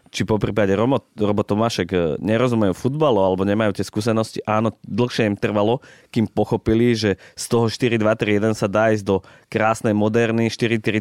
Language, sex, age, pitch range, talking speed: Slovak, male, 20-39, 95-115 Hz, 165 wpm